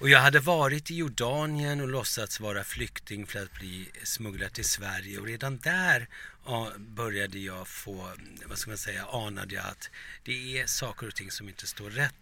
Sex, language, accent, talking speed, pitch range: male, English, Swedish, 185 wpm, 100-130 Hz